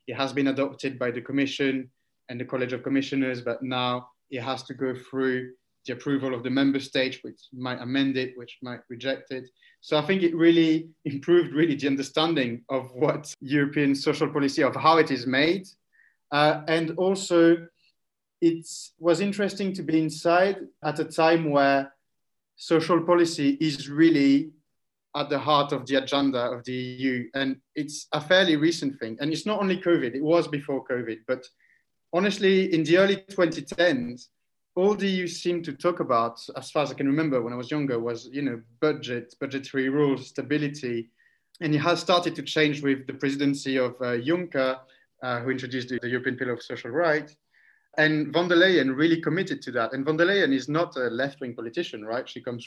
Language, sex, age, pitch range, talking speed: English, male, 30-49, 130-160 Hz, 185 wpm